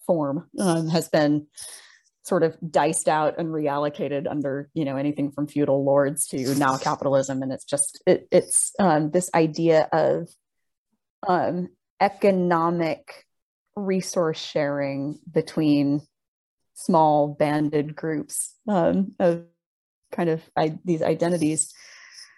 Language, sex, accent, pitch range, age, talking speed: English, female, American, 150-185 Hz, 30-49, 115 wpm